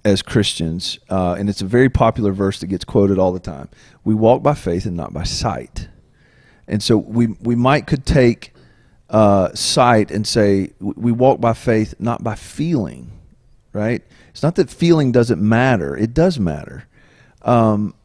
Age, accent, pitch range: 40-59, American, 100-120 Hz